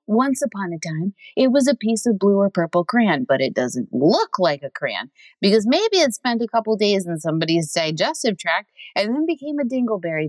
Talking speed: 215 wpm